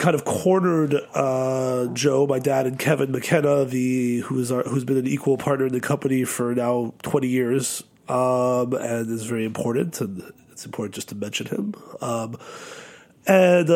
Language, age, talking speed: English, 30-49, 170 wpm